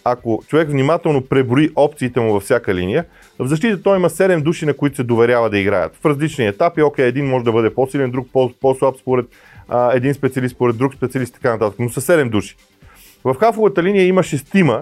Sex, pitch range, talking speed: male, 115-155 Hz, 205 wpm